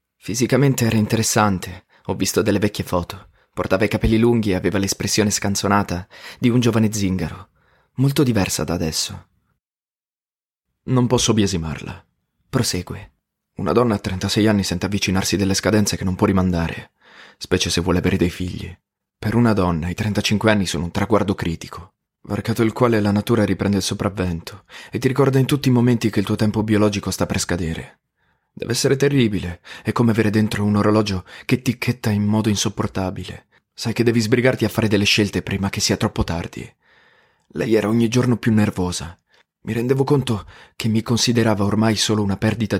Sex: male